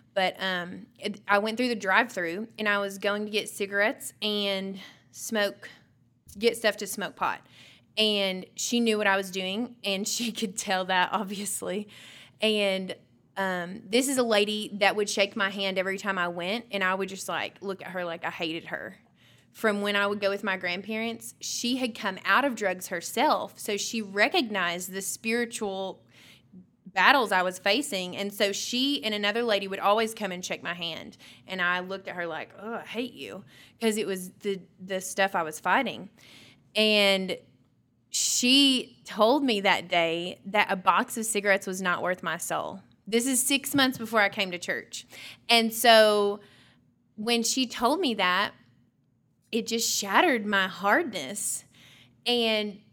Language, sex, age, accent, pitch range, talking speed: English, female, 20-39, American, 190-225 Hz, 175 wpm